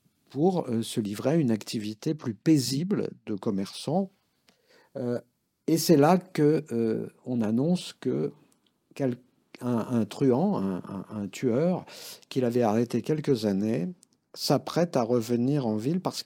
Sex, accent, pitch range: male, French, 125-175 Hz